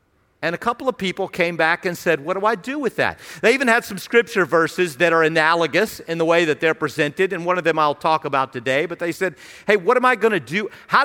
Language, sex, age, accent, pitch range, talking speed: English, male, 50-69, American, 165-235 Hz, 265 wpm